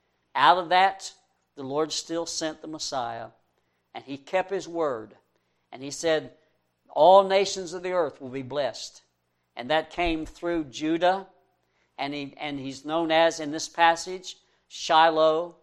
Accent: American